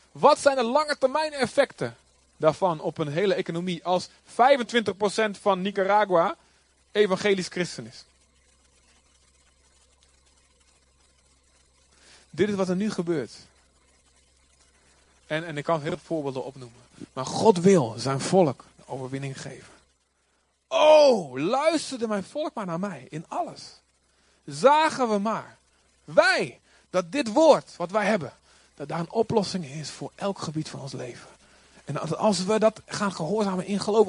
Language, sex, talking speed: Dutch, male, 135 wpm